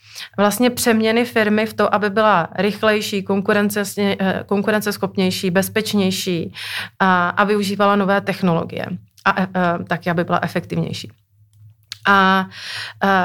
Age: 30-49